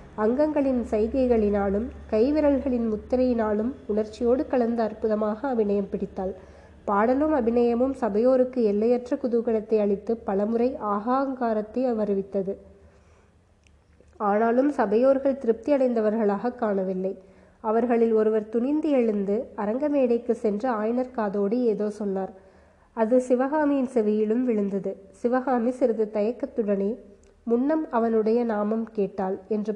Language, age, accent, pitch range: Tamil, 20-39, native, 210-250 Hz